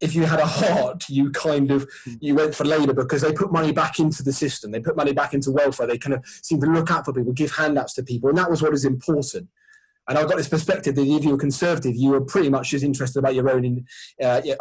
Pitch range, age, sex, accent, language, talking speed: 135-160 Hz, 20-39, male, British, English, 265 wpm